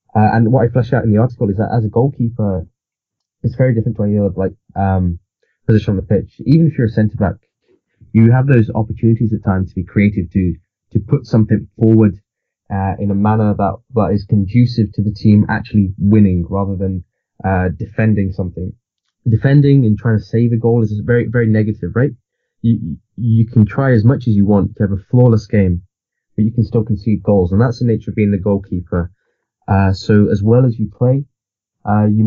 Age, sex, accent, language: 20-39, male, British, English